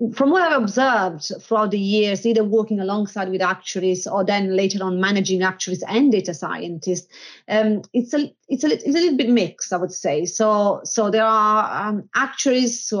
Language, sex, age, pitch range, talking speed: English, female, 30-49, 190-225 Hz, 190 wpm